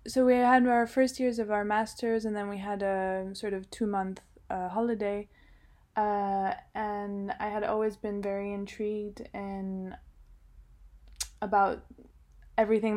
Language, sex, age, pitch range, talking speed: Italian, female, 20-39, 180-210 Hz, 130 wpm